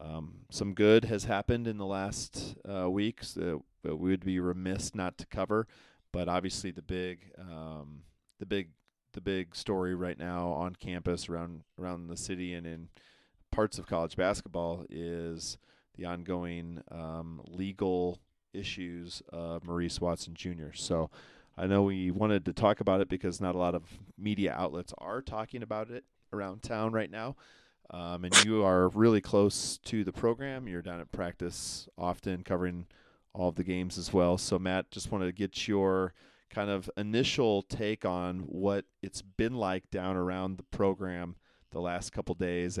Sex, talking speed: male, 170 wpm